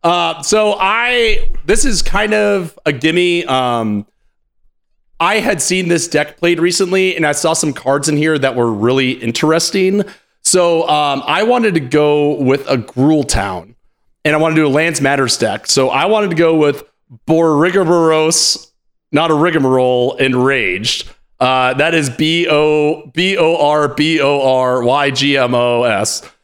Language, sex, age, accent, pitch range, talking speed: English, male, 30-49, American, 135-175 Hz, 140 wpm